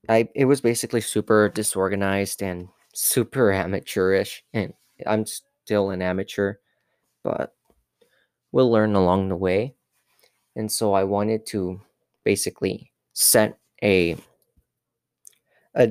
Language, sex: English, male